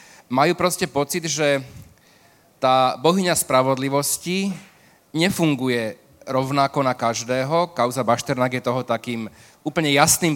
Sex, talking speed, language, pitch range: male, 105 wpm, Slovak, 130-165 Hz